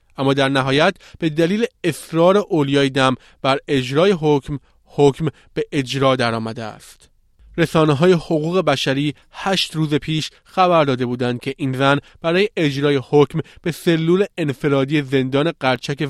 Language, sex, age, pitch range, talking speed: Persian, male, 30-49, 125-150 Hz, 140 wpm